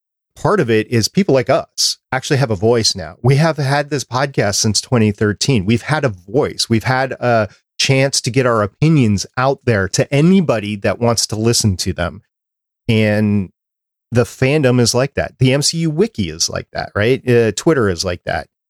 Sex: male